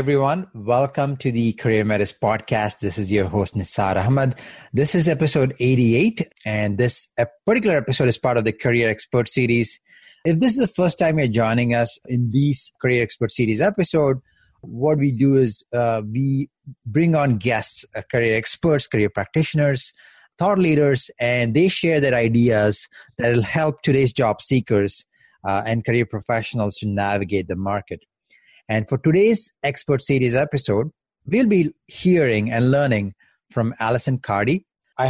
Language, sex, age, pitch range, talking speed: English, male, 30-49, 110-150 Hz, 160 wpm